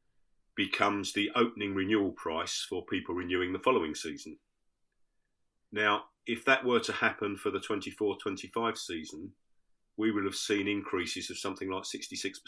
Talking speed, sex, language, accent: 140 wpm, male, English, British